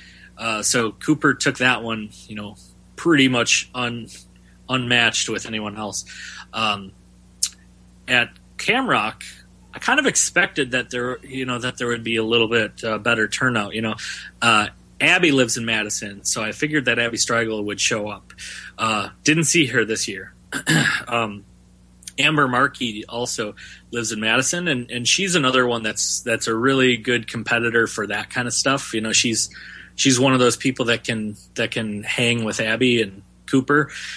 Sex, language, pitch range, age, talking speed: male, English, 105-135 Hz, 30-49, 170 wpm